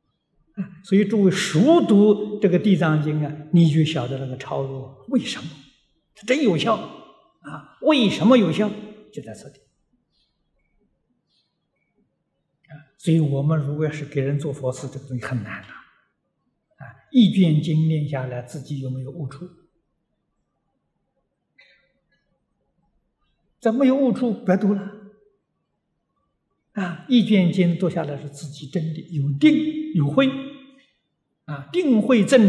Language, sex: Chinese, male